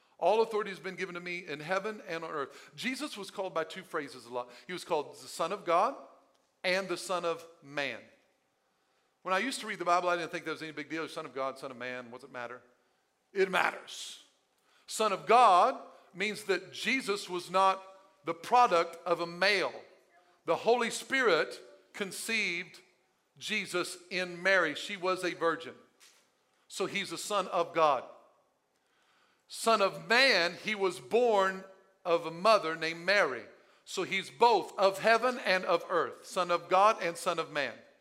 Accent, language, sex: American, English, male